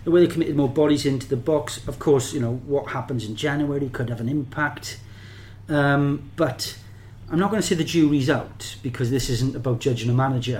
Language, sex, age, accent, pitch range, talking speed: English, male, 30-49, British, 110-135 Hz, 215 wpm